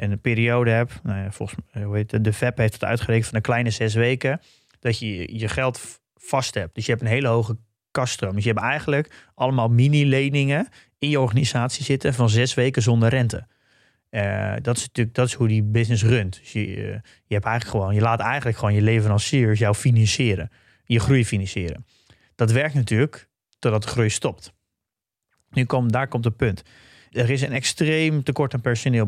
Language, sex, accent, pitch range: Dutch, male, Dutch, 110-130 Hz